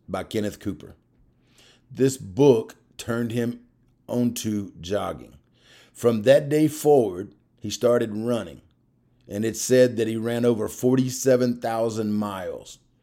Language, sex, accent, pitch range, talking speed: English, male, American, 105-125 Hz, 115 wpm